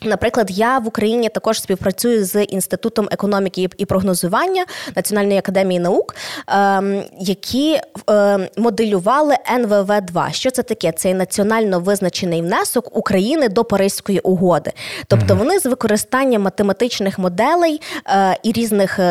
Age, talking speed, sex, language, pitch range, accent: 20-39, 115 wpm, female, Ukrainian, 185-235 Hz, native